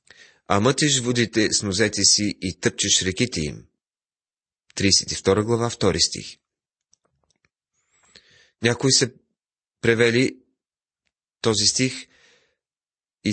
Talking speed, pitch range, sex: 90 wpm, 100-130 Hz, male